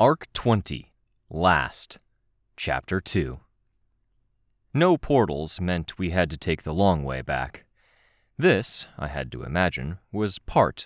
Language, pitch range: English, 80-110 Hz